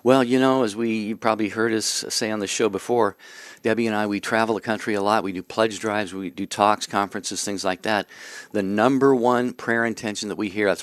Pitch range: 100-120 Hz